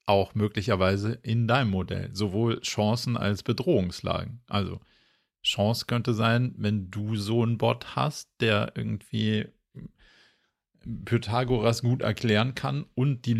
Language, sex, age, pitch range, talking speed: German, male, 40-59, 105-120 Hz, 120 wpm